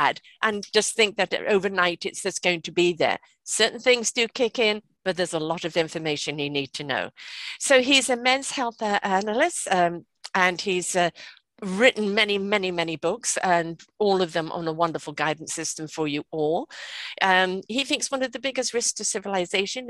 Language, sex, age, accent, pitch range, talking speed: English, female, 50-69, British, 185-280 Hz, 190 wpm